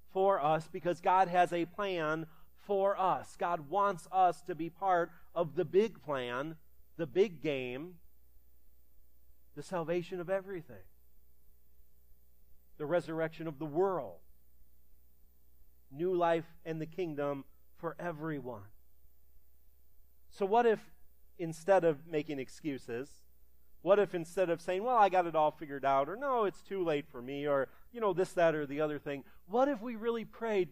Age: 40-59